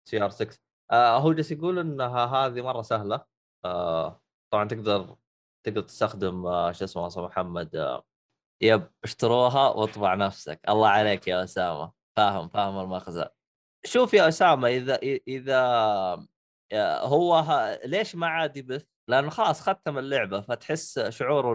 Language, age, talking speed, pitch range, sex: Arabic, 20-39, 135 wpm, 100-135 Hz, male